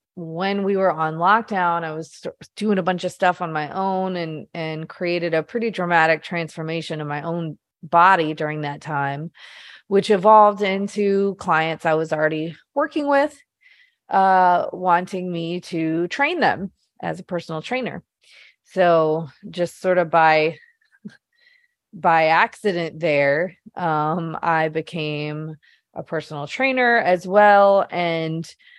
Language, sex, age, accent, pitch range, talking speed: English, female, 30-49, American, 160-195 Hz, 135 wpm